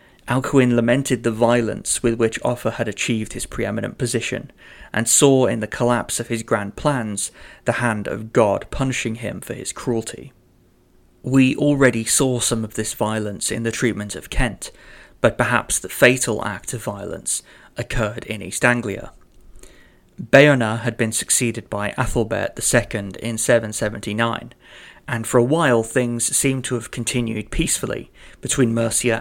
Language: English